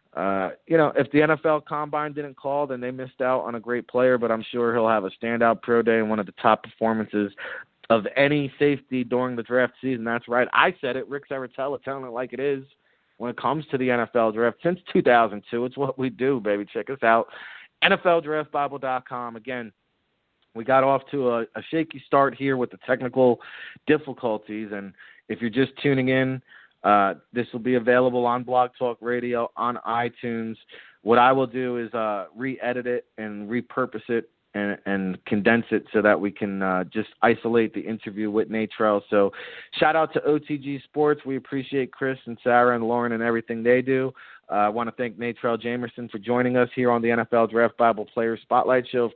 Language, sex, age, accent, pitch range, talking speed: English, male, 40-59, American, 115-135 Hz, 200 wpm